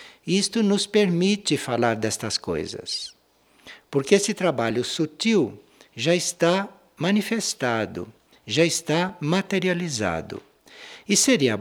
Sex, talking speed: male, 95 wpm